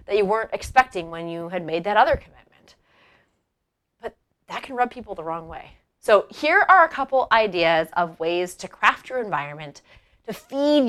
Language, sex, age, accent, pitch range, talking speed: English, female, 30-49, American, 175-260 Hz, 180 wpm